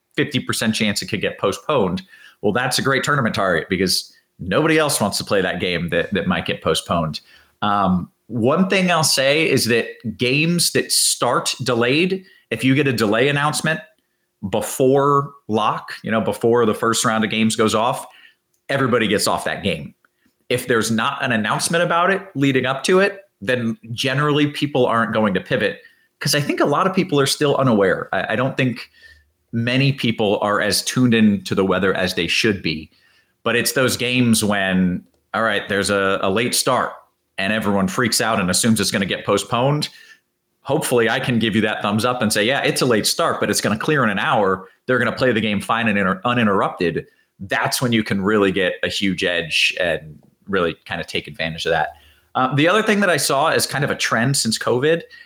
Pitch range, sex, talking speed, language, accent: 105-145 Hz, male, 205 wpm, English, American